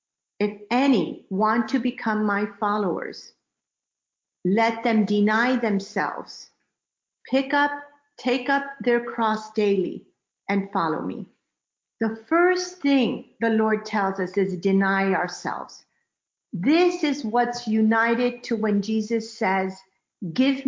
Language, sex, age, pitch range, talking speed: English, female, 50-69, 210-260 Hz, 115 wpm